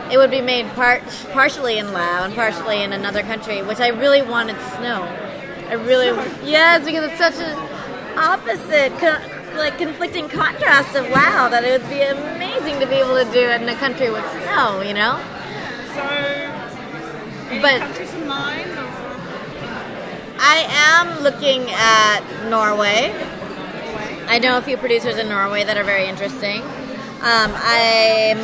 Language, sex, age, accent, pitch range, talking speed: English, female, 30-49, American, 215-265 Hz, 145 wpm